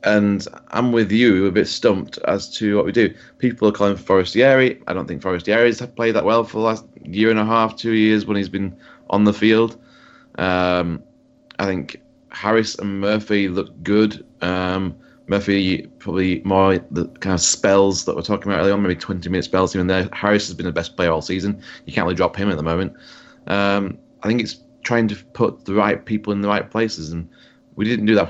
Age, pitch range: 20-39, 90-110 Hz